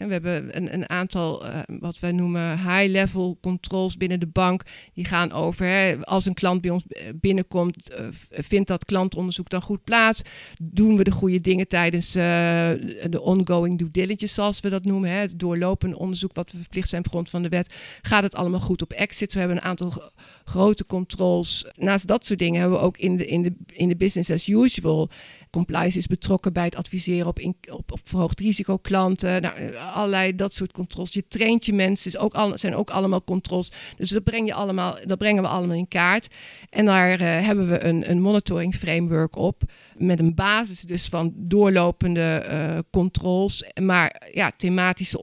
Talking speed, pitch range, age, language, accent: 190 wpm, 170-190 Hz, 50-69, Dutch, Dutch